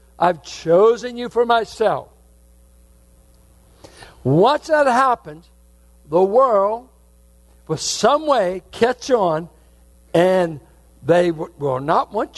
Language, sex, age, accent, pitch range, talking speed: English, male, 60-79, American, 130-225 Hz, 95 wpm